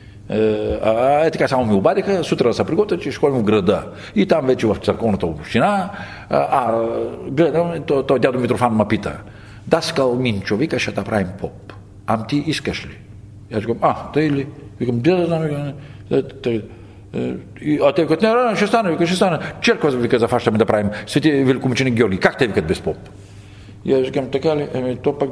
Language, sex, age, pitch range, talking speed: Bulgarian, male, 50-69, 110-165 Hz, 175 wpm